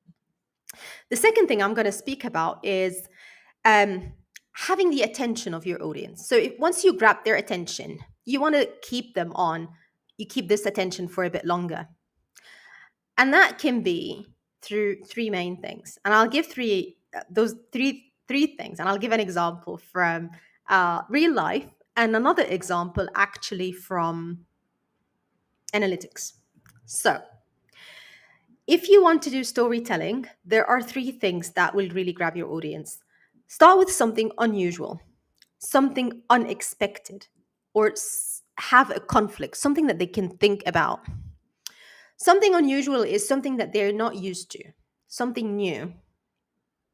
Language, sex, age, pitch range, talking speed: English, female, 30-49, 185-275 Hz, 140 wpm